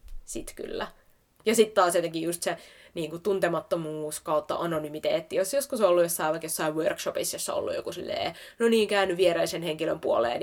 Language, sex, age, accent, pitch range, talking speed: Finnish, female, 20-39, native, 170-225 Hz, 180 wpm